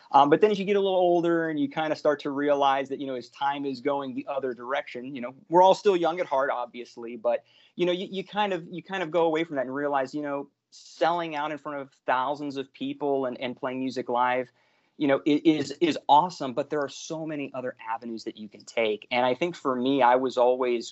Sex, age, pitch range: male, 30-49, 120-150 Hz